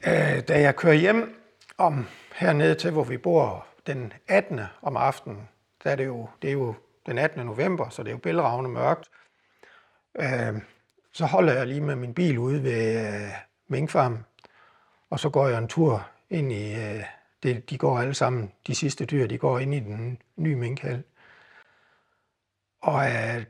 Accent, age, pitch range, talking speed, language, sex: native, 60-79, 115-155 Hz, 145 wpm, Danish, male